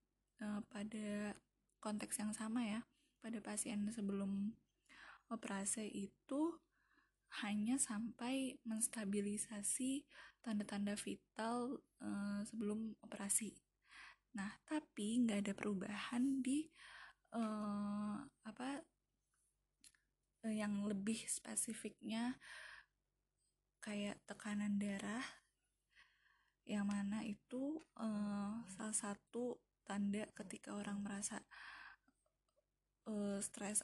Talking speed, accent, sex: 75 wpm, native, female